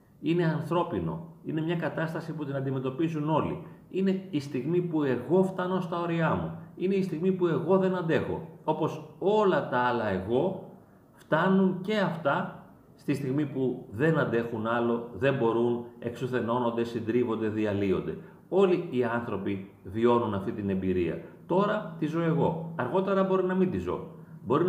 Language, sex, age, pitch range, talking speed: Greek, male, 40-59, 130-180 Hz, 150 wpm